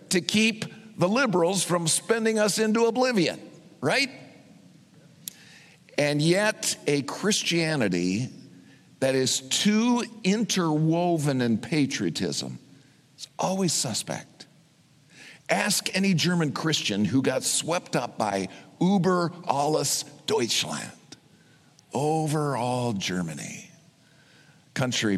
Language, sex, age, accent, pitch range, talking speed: English, male, 50-69, American, 115-185 Hz, 95 wpm